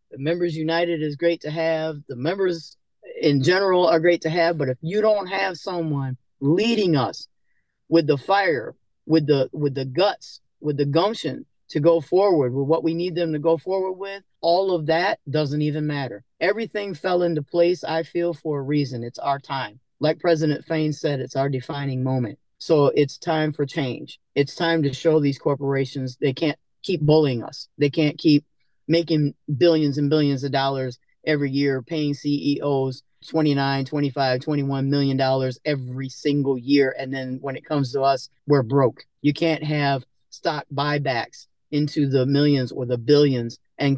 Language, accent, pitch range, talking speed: English, American, 135-165 Hz, 175 wpm